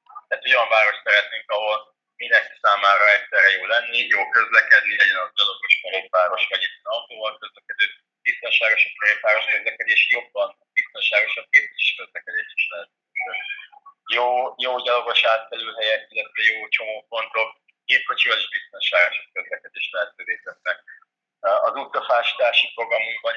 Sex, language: male, Hungarian